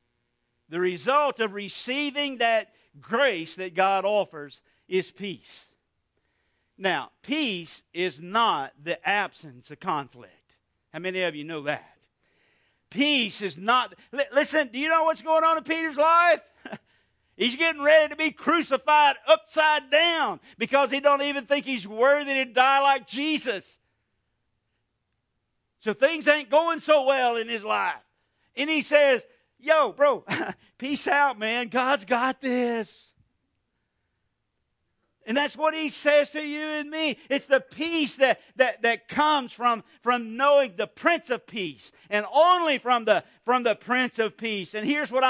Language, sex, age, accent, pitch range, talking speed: English, male, 50-69, American, 205-285 Hz, 150 wpm